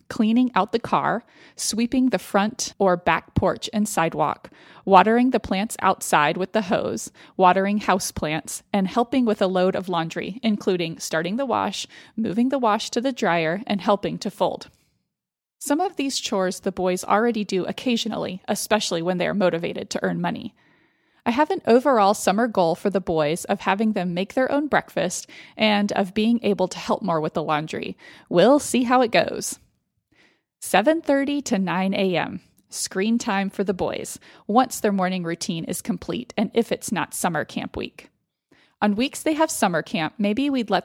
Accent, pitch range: American, 185-235 Hz